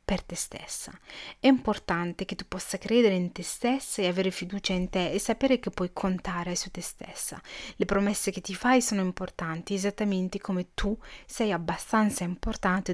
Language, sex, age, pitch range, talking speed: Italian, female, 30-49, 180-230 Hz, 175 wpm